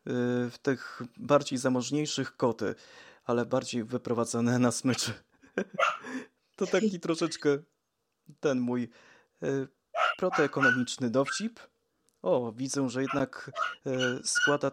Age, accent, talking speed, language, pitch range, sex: 20-39, native, 90 wpm, Polish, 115-155 Hz, male